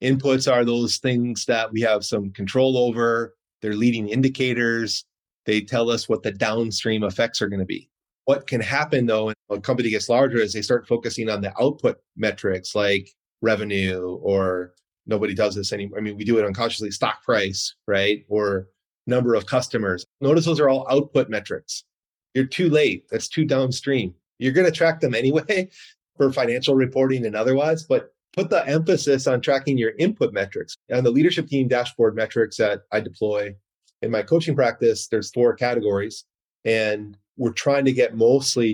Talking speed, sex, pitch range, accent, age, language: 180 wpm, male, 105-130 Hz, American, 30-49, English